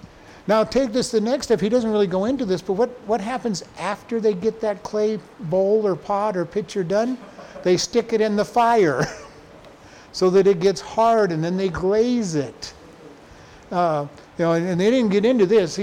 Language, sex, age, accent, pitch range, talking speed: English, male, 60-79, American, 160-210 Hz, 200 wpm